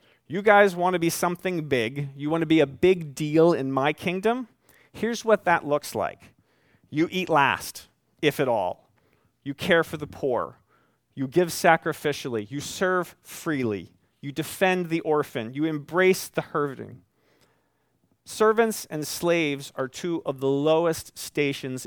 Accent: American